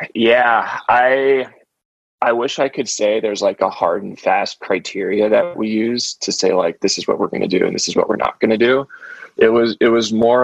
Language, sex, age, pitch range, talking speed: English, male, 20-39, 95-125 Hz, 225 wpm